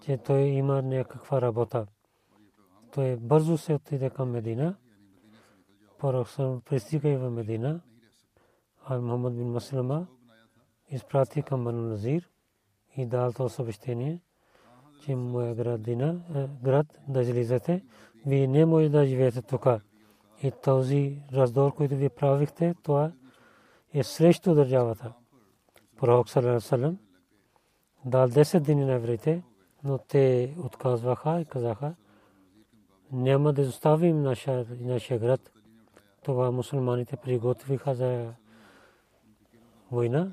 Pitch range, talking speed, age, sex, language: 120-140 Hz, 100 wpm, 40-59, male, Bulgarian